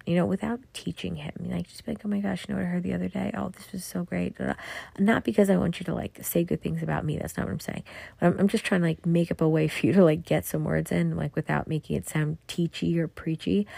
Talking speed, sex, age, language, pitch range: 310 wpm, female, 30-49, English, 165-220 Hz